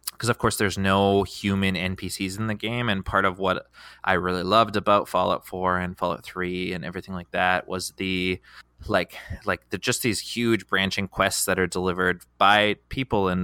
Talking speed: 190 wpm